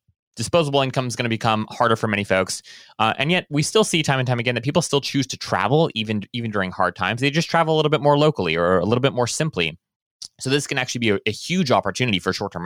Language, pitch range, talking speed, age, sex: English, 105-145 Hz, 265 wpm, 20-39, male